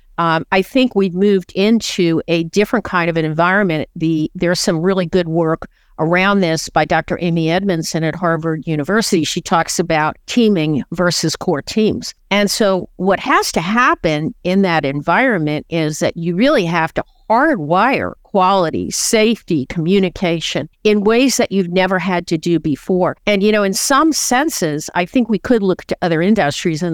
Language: English